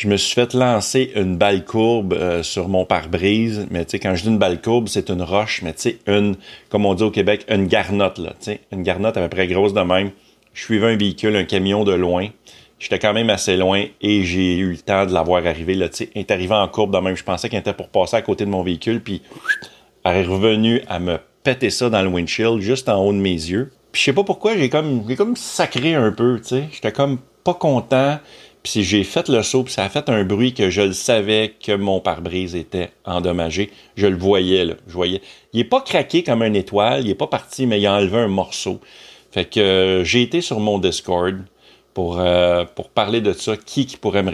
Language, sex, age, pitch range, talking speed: French, male, 40-59, 95-115 Hz, 245 wpm